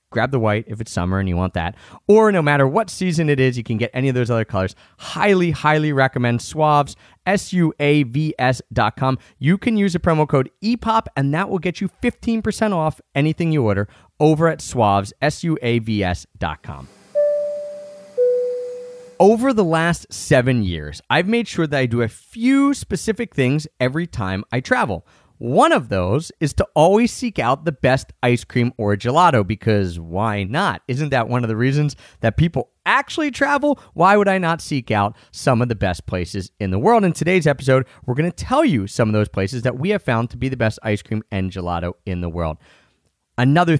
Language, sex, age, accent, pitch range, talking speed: English, male, 30-49, American, 110-170 Hz, 205 wpm